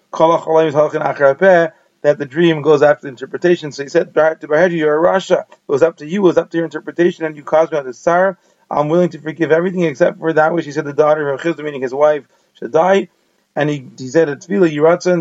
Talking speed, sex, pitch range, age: 235 wpm, male, 150-175 Hz, 30-49